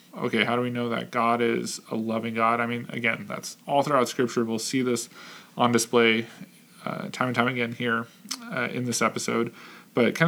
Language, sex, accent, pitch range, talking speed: English, male, American, 115-125 Hz, 205 wpm